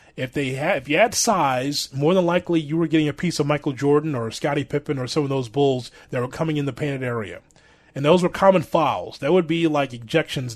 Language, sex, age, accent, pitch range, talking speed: English, male, 30-49, American, 125-160 Hz, 245 wpm